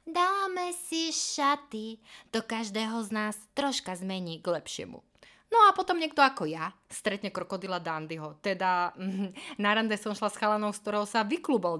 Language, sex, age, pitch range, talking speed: Slovak, female, 20-39, 195-290 Hz, 160 wpm